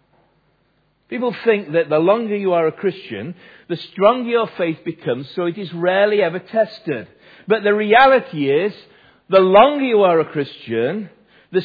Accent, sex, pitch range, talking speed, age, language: British, male, 160-215 Hz, 160 wpm, 50-69, English